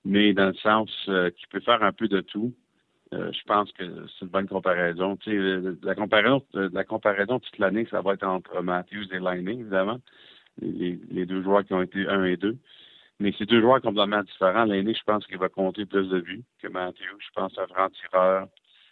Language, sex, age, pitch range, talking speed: French, male, 60-79, 95-105 Hz, 215 wpm